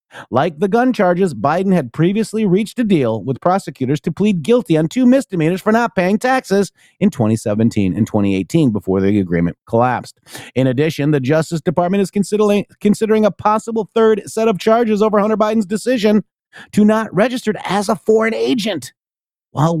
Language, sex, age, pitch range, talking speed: English, male, 40-59, 135-200 Hz, 170 wpm